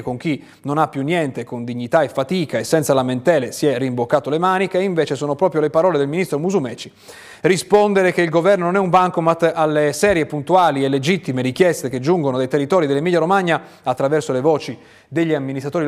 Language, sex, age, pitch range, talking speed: Italian, male, 30-49, 135-170 Hz, 195 wpm